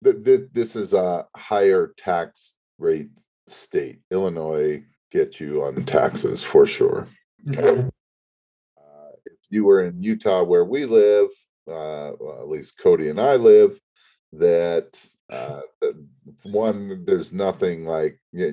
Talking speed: 120 wpm